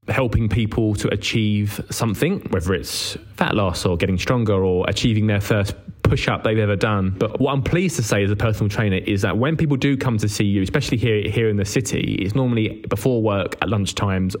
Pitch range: 100-125 Hz